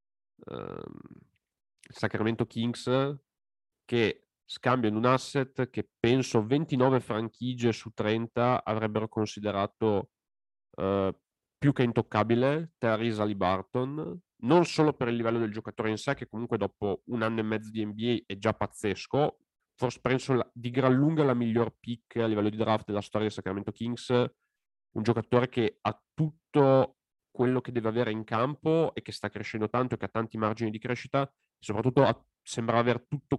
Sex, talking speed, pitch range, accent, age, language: male, 160 wpm, 110-130 Hz, native, 30-49, Italian